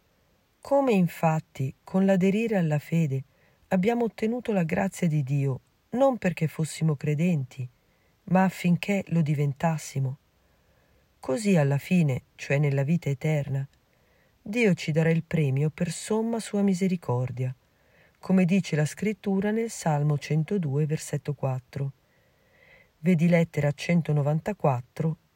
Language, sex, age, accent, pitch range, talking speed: Italian, female, 40-59, native, 145-195 Hz, 115 wpm